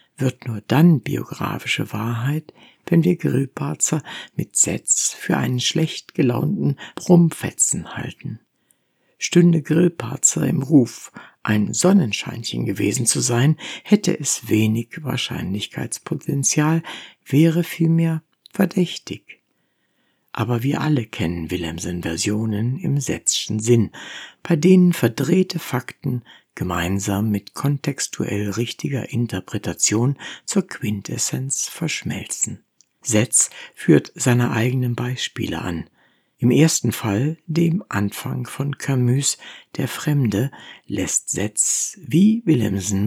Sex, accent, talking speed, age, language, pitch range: female, German, 100 wpm, 60-79, German, 115-160 Hz